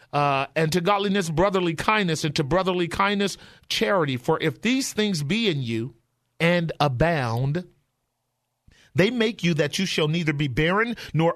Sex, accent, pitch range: male, American, 150-195 Hz